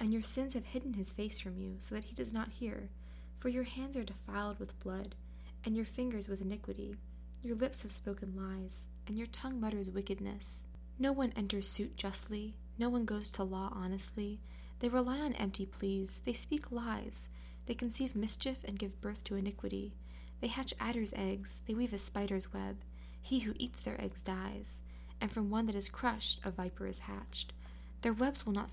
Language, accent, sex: English, American, female